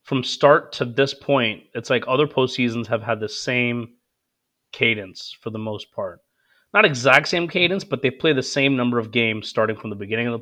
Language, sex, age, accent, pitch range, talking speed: English, male, 30-49, American, 115-140 Hz, 205 wpm